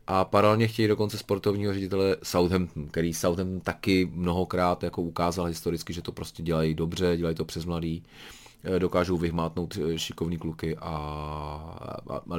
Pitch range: 85-115 Hz